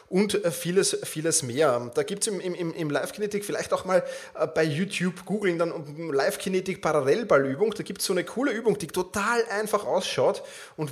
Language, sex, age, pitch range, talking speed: German, male, 30-49, 170-215 Hz, 170 wpm